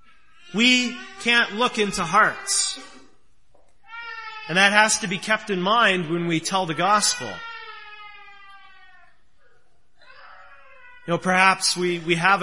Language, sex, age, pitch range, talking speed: English, male, 30-49, 180-280 Hz, 115 wpm